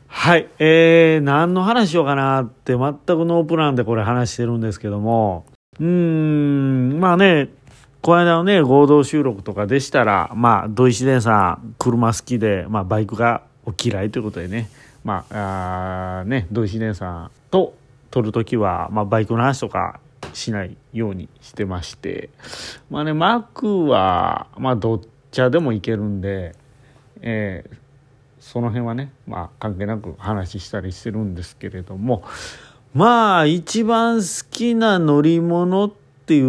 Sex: male